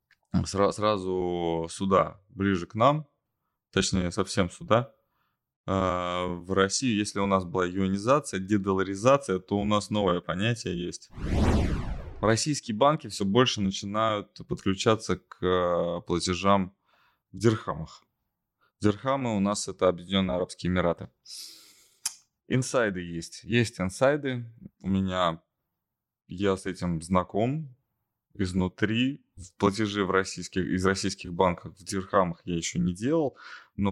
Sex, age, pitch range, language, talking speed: male, 20-39, 90-110 Hz, Russian, 110 wpm